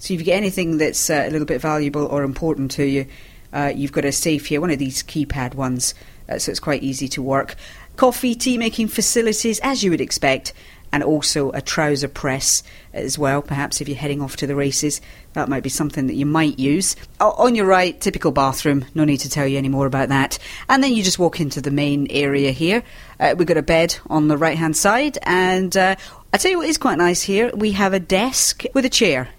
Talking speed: 230 wpm